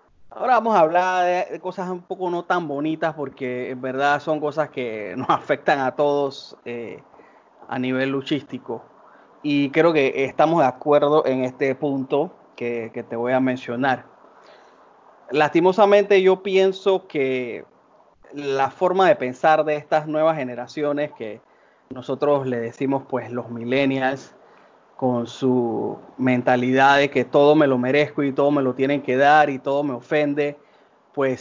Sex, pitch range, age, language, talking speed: male, 130-160 Hz, 30-49, Spanish, 155 wpm